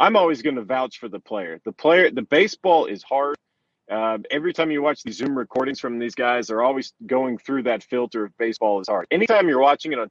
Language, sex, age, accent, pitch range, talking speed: English, male, 30-49, American, 120-170 Hz, 235 wpm